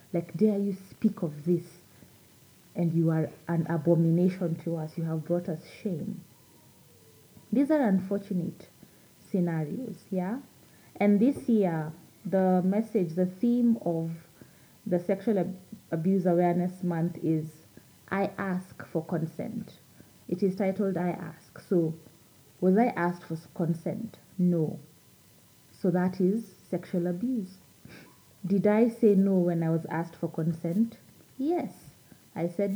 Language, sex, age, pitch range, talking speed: English, female, 30-49, 165-200 Hz, 130 wpm